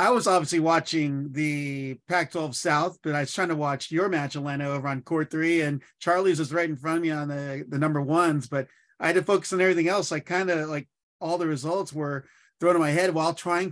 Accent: American